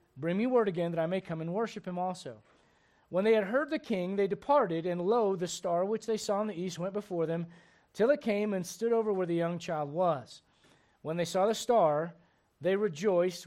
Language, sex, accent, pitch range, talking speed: English, male, American, 175-225 Hz, 225 wpm